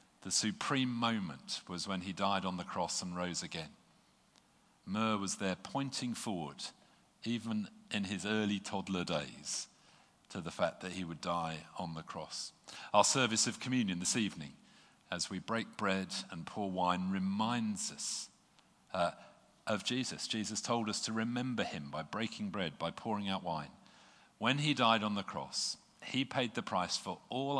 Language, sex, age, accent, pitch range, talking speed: English, male, 50-69, British, 100-125 Hz, 165 wpm